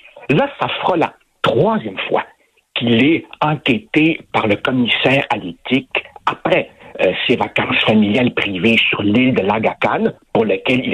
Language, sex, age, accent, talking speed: French, male, 60-79, French, 150 wpm